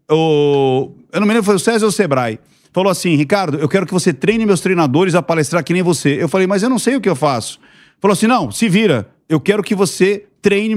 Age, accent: 40-59, Brazilian